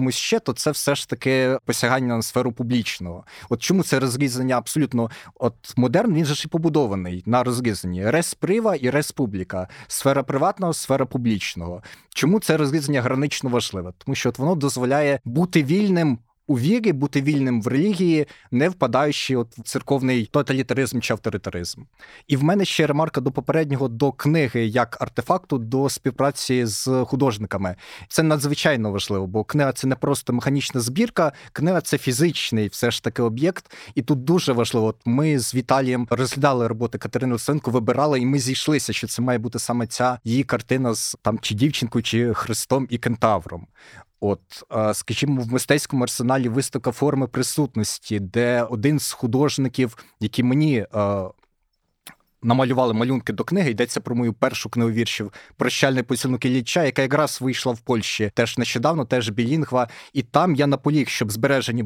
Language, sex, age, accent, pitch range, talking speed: Ukrainian, male, 30-49, native, 120-145 Hz, 160 wpm